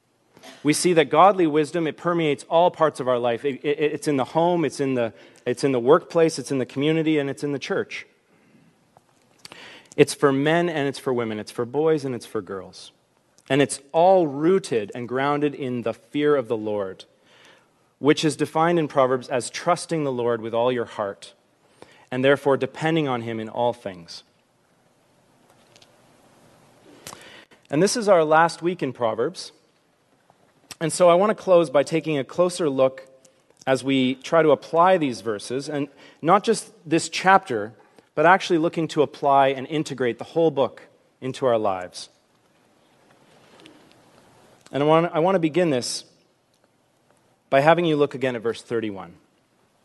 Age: 30-49